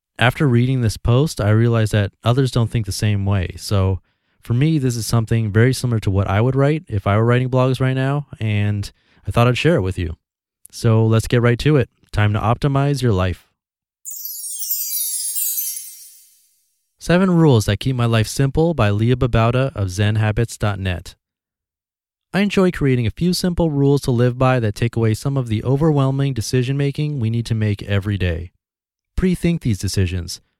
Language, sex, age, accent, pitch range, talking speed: English, male, 30-49, American, 105-135 Hz, 180 wpm